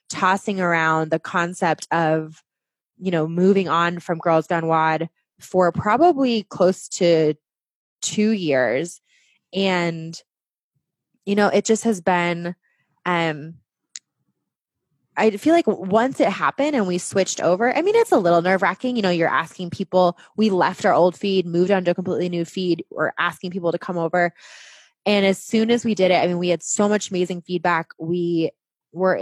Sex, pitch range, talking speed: female, 165-195 Hz, 175 wpm